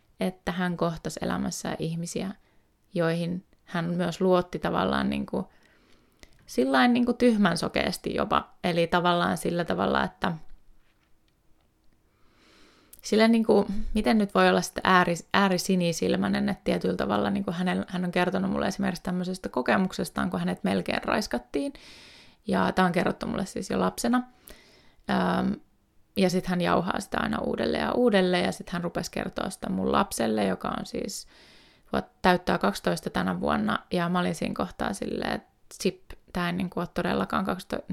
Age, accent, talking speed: 20-39, native, 145 wpm